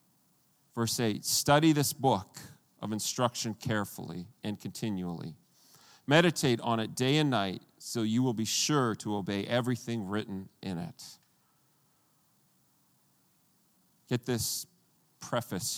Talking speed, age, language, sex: 115 wpm, 40-59, English, male